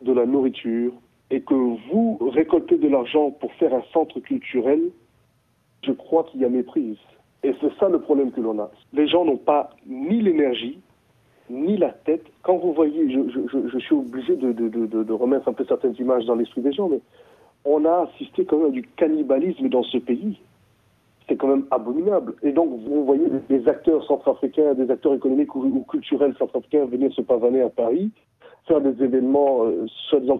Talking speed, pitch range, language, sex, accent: 190 wpm, 130-205 Hz, French, male, French